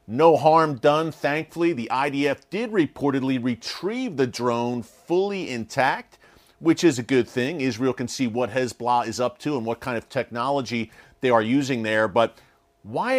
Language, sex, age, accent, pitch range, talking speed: English, male, 40-59, American, 120-160 Hz, 170 wpm